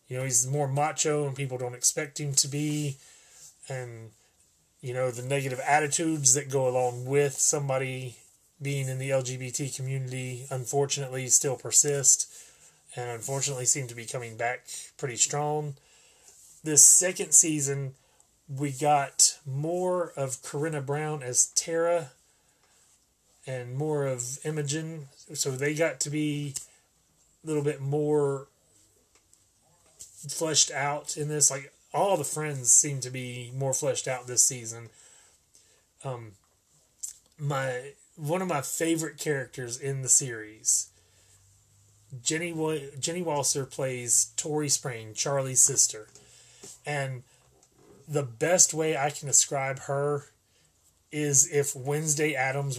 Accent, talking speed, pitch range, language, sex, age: American, 125 wpm, 125-150 Hz, English, male, 30-49